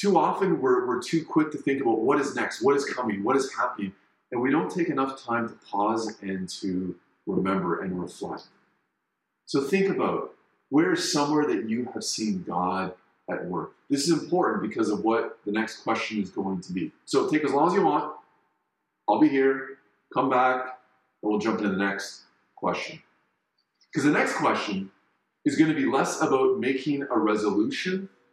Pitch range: 110-155 Hz